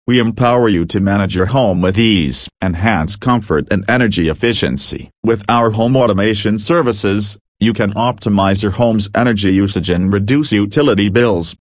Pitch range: 95-115 Hz